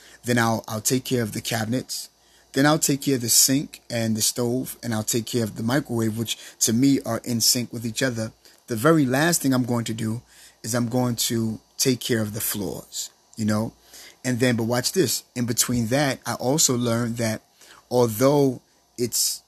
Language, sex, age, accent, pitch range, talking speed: English, male, 30-49, American, 115-135 Hz, 205 wpm